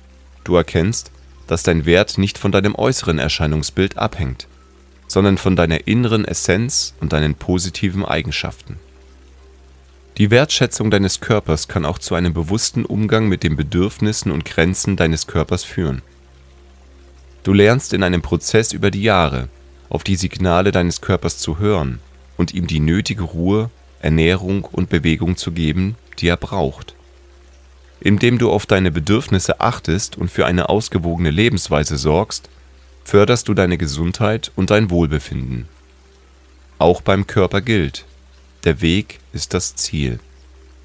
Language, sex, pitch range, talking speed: German, male, 65-100 Hz, 140 wpm